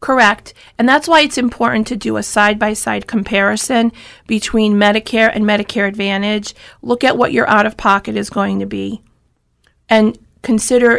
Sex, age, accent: female, 40-59, American